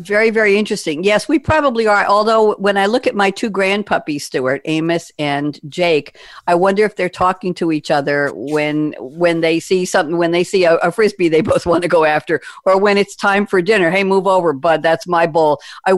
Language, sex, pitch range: English, female, 170-220 Hz